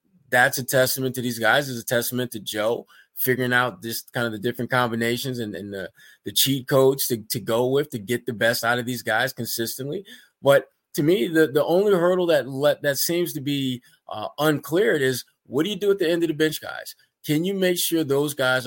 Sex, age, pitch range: male, 20-39, 120-160 Hz